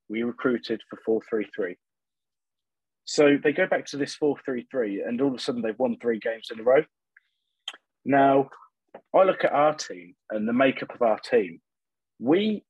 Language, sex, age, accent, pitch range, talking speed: English, male, 30-49, British, 120-160 Hz, 190 wpm